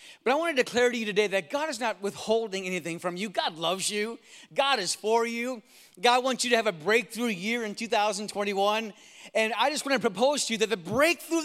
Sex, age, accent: male, 30-49, American